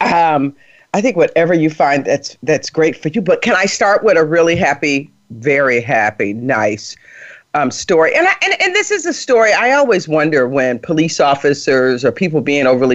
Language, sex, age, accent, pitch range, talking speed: English, female, 40-59, American, 145-235 Hz, 195 wpm